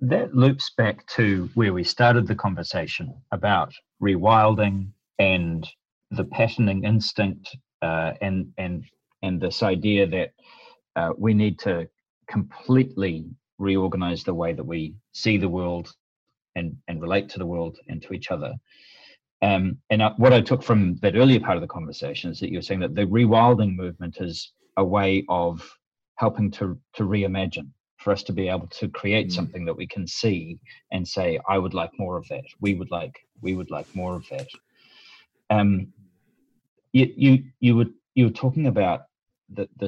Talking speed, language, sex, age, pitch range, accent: 170 wpm, English, male, 40-59, 90-110 Hz, Australian